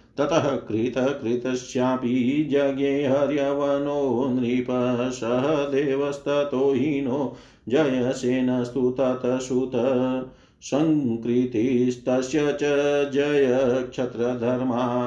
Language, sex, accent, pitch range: Hindi, male, native, 125-145 Hz